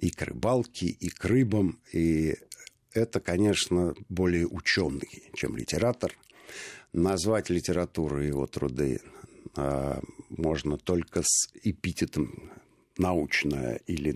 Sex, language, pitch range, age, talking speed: male, Russian, 80-95 Hz, 60-79, 100 wpm